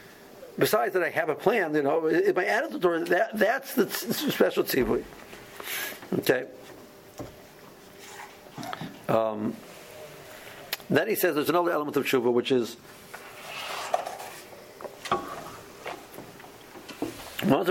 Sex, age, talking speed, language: male, 60-79, 110 wpm, English